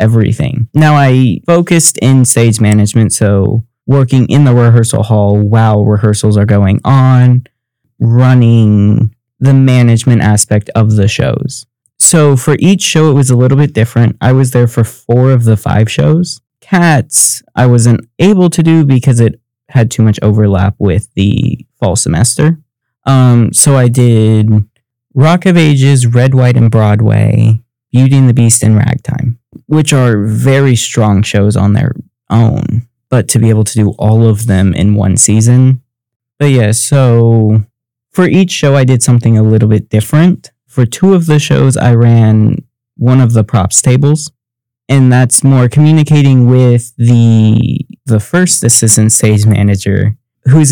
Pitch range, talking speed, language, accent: 110-135 Hz, 160 wpm, English, American